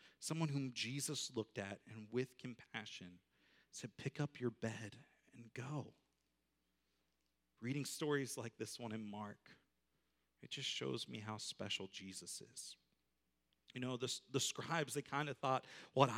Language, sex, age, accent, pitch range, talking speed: English, male, 40-59, American, 110-165 Hz, 150 wpm